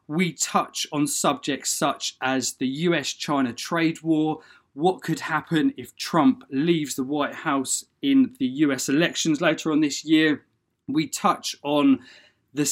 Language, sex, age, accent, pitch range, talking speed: English, male, 20-39, British, 135-195 Hz, 145 wpm